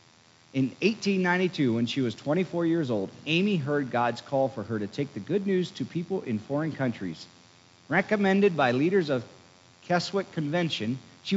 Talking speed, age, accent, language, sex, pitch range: 165 wpm, 50-69, American, English, male, 120-170 Hz